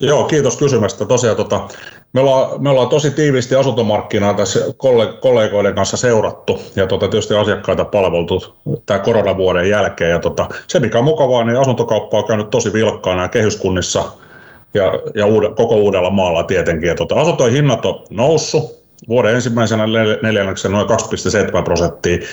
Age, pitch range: 30-49, 105-135 Hz